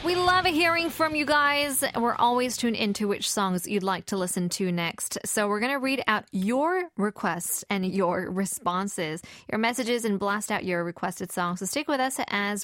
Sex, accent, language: female, American, English